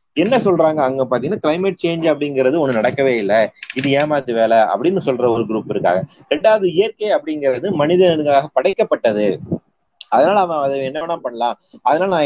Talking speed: 145 wpm